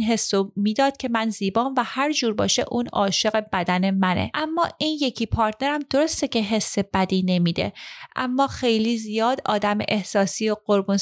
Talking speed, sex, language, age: 160 wpm, female, Persian, 30-49